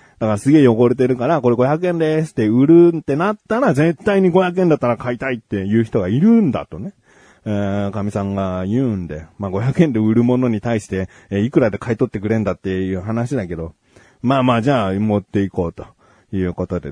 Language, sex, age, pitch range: Japanese, male, 30-49, 105-165 Hz